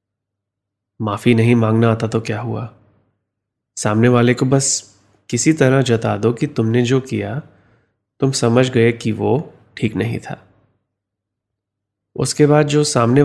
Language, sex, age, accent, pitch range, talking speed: Hindi, male, 20-39, native, 100-120 Hz, 140 wpm